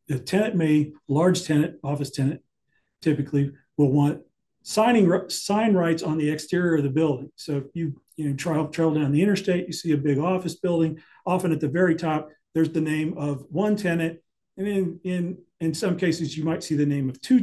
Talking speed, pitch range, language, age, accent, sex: 205 wpm, 145-170 Hz, English, 40-59, American, male